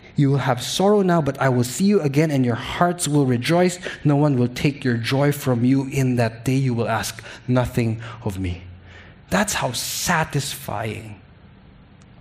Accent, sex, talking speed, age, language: Filipino, male, 175 wpm, 20-39, English